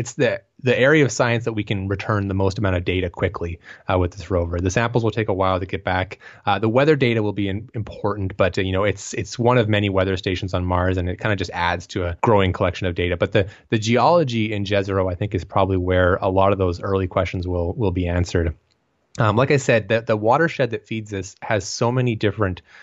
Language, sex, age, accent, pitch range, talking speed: English, male, 20-39, American, 95-120 Hz, 255 wpm